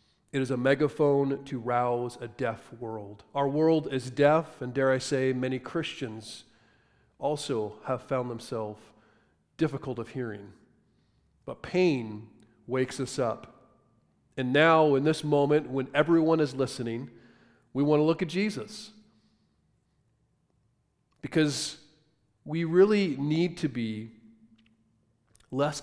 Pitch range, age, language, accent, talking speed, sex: 115-155 Hz, 40-59, English, American, 125 wpm, male